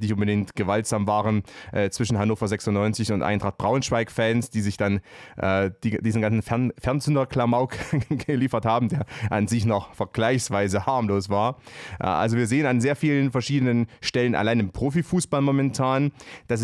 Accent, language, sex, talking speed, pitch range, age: German, German, male, 160 wpm, 105-130 Hz, 30-49